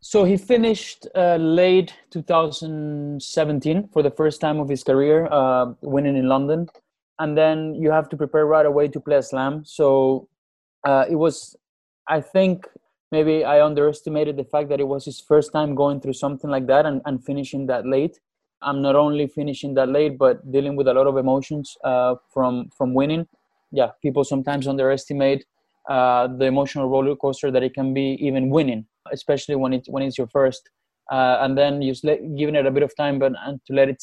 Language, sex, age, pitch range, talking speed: English, male, 20-39, 135-155 Hz, 195 wpm